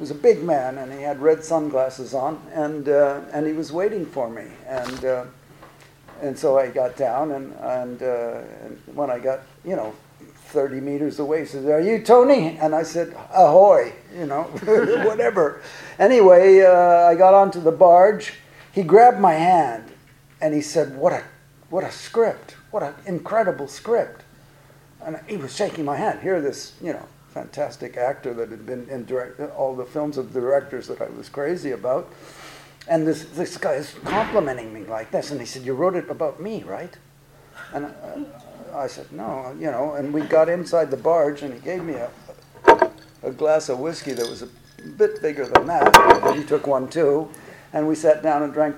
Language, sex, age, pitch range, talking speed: English, male, 50-69, 135-170 Hz, 195 wpm